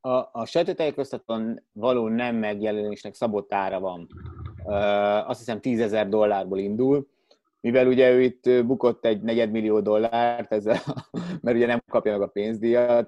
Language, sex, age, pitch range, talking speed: Hungarian, male, 30-49, 105-130 Hz, 135 wpm